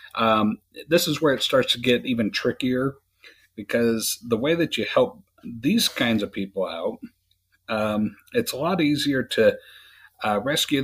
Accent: American